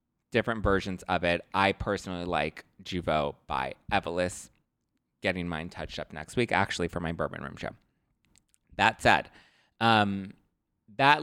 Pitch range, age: 90-125 Hz, 20-39